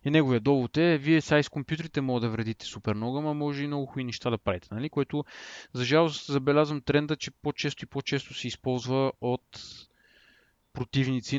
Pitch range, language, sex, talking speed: 120-145 Hz, Bulgarian, male, 180 wpm